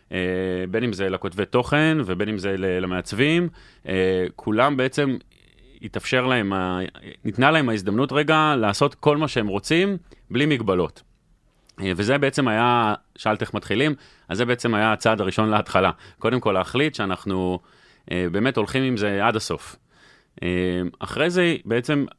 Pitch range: 90-120 Hz